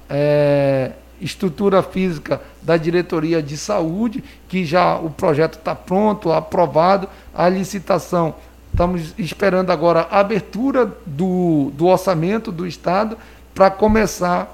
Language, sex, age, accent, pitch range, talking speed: Portuguese, male, 60-79, Brazilian, 165-200 Hz, 110 wpm